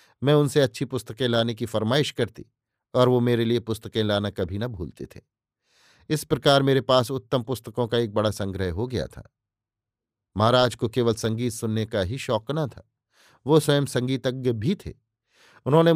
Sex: male